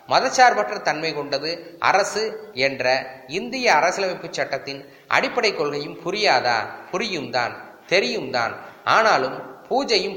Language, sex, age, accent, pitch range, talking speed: Tamil, male, 20-39, native, 140-195 Hz, 90 wpm